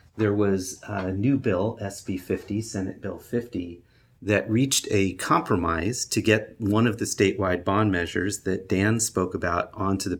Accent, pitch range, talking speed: American, 95-110 Hz, 165 wpm